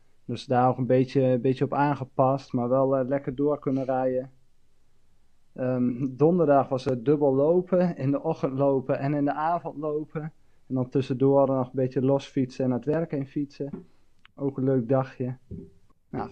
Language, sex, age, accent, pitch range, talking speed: Dutch, male, 20-39, Dutch, 130-150 Hz, 180 wpm